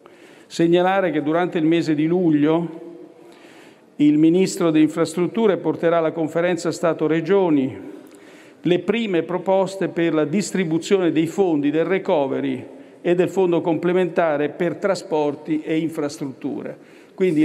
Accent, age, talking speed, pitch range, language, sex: native, 50-69, 115 wpm, 155-185 Hz, Italian, male